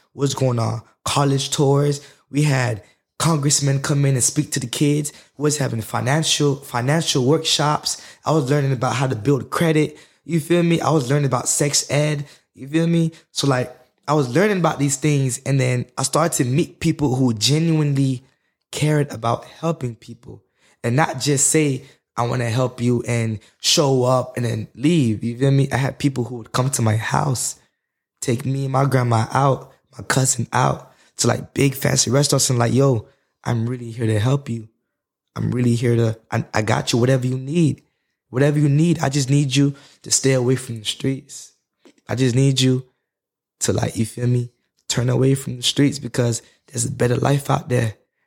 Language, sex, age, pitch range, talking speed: English, male, 20-39, 120-145 Hz, 195 wpm